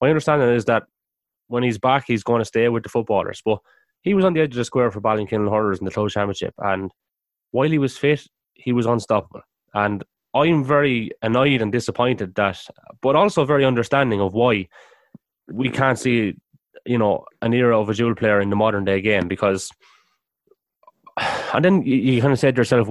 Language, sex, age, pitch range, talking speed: English, male, 20-39, 110-140 Hz, 200 wpm